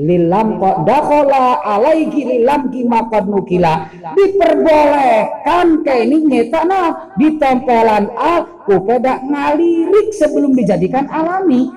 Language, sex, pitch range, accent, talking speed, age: Indonesian, female, 175-290 Hz, native, 95 wpm, 40-59